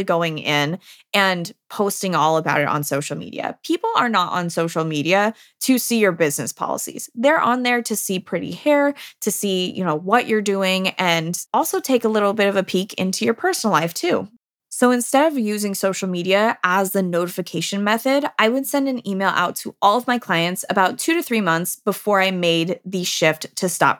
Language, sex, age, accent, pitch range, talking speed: English, female, 20-39, American, 175-230 Hz, 205 wpm